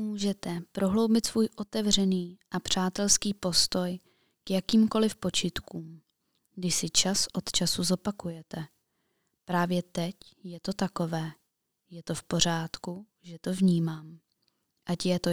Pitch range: 170-200 Hz